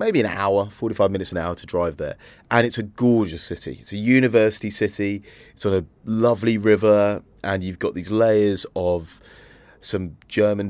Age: 30-49